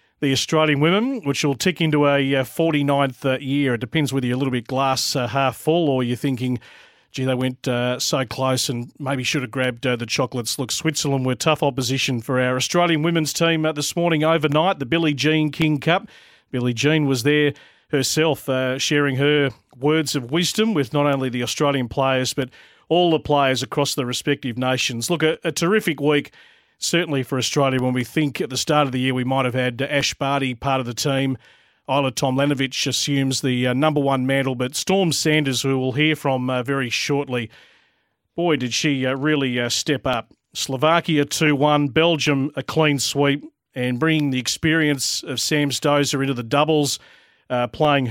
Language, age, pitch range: English, 40-59, 130-155 Hz